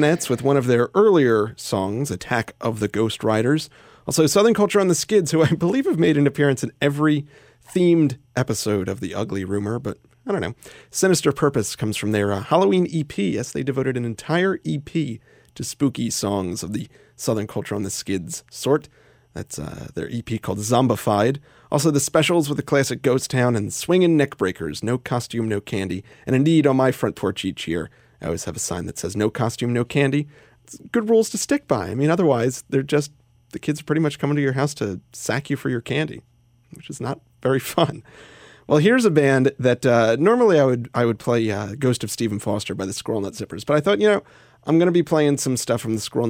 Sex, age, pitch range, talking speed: male, 30-49, 110-150 Hz, 220 wpm